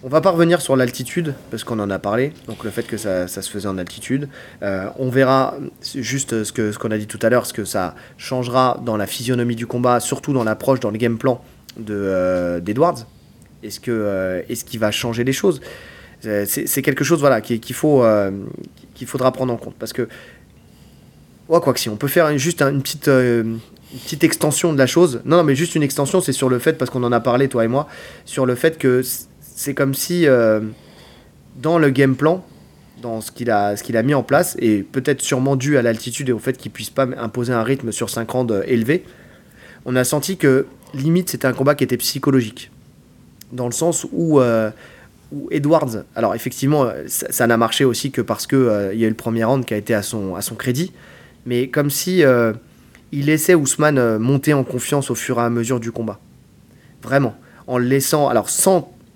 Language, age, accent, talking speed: French, 20-39, French, 225 wpm